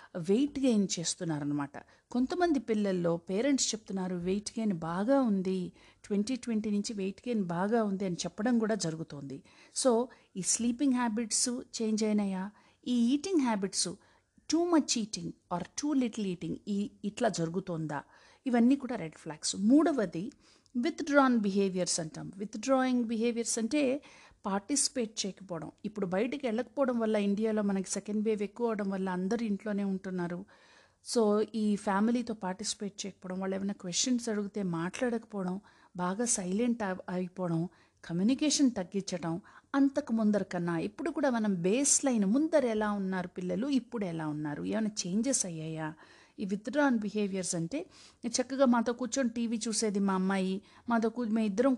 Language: Telugu